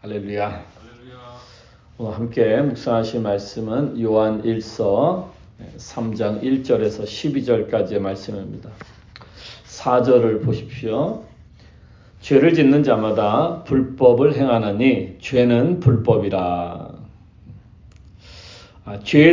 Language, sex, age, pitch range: Korean, male, 40-59, 105-135 Hz